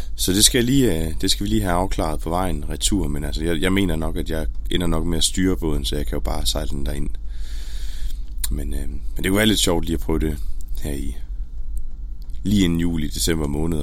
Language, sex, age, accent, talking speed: Danish, male, 30-49, native, 235 wpm